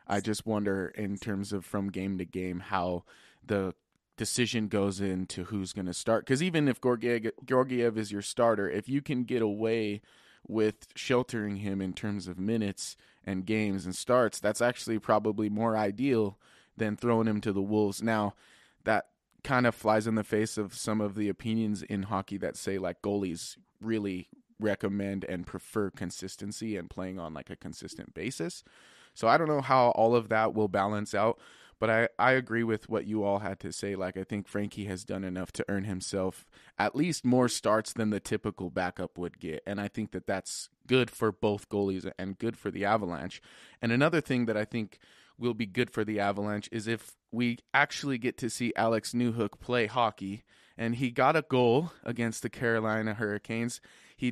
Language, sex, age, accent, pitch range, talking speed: English, male, 20-39, American, 100-115 Hz, 190 wpm